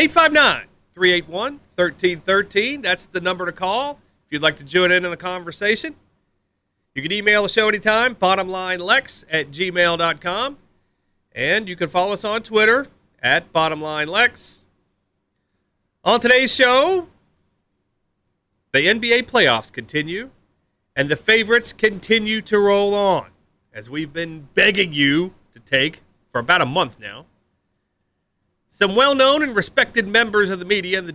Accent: American